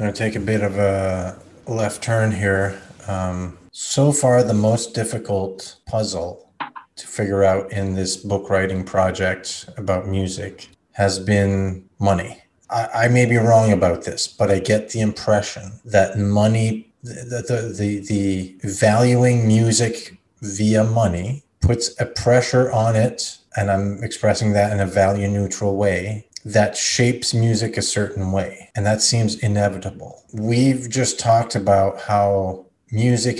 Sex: male